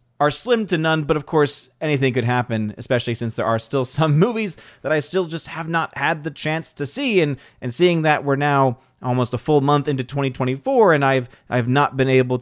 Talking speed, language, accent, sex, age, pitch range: 220 wpm, English, American, male, 30-49, 120-155 Hz